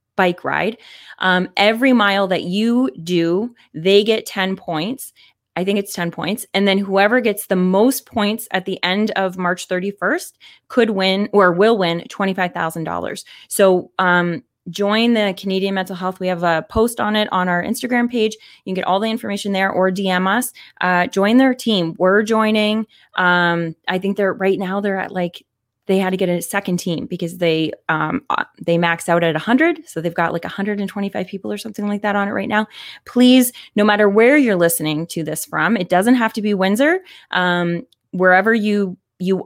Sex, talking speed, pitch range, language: female, 195 wpm, 175-210 Hz, English